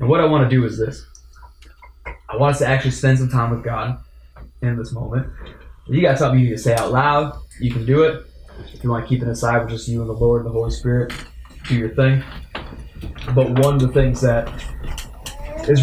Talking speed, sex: 230 wpm, male